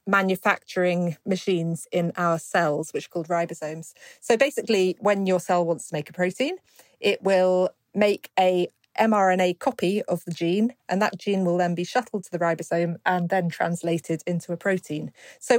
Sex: female